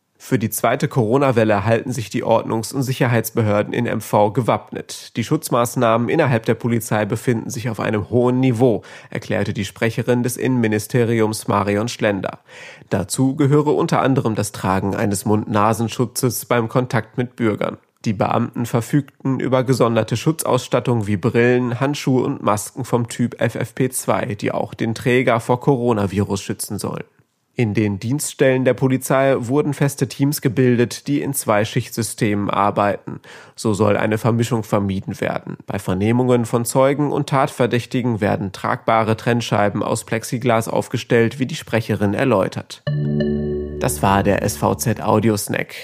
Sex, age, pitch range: male, 30-49, 105-130 Hz